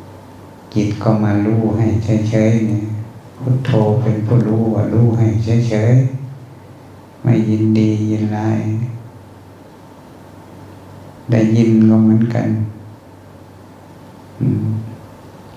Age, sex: 60-79, male